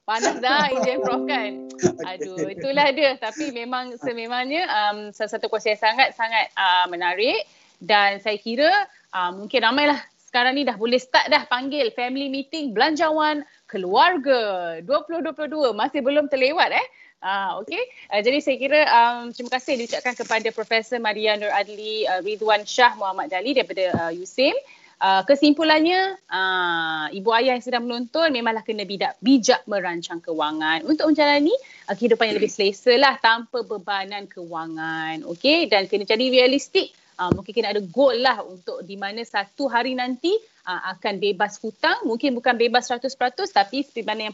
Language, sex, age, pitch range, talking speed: Malay, female, 20-39, 200-290 Hz, 155 wpm